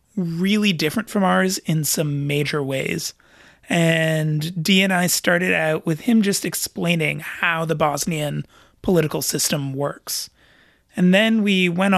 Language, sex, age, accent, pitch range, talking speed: English, male, 30-49, American, 150-185 Hz, 140 wpm